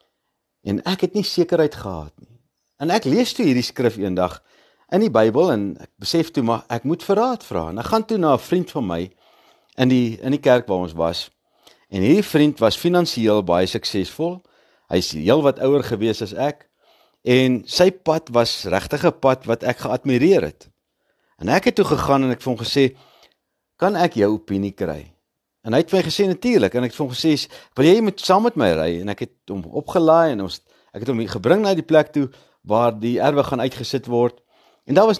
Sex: male